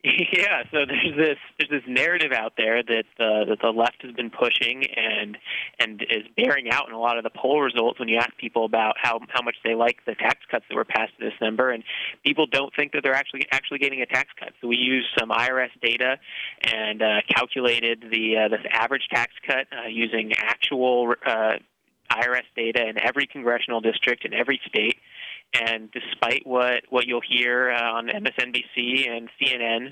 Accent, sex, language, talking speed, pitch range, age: American, male, English, 195 wpm, 115-135 Hz, 20-39